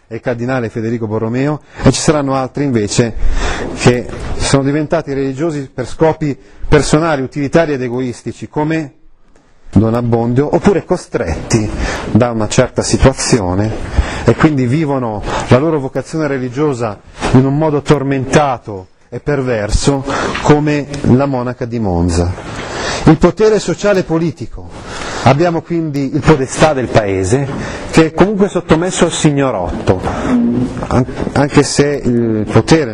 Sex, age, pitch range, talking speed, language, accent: male, 30-49, 110-150 Hz, 125 wpm, Italian, native